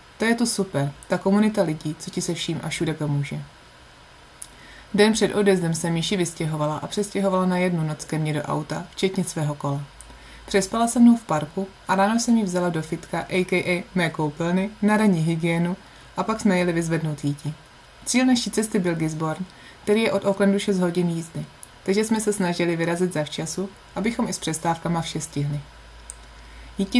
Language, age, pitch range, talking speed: Czech, 20-39, 155-190 Hz, 180 wpm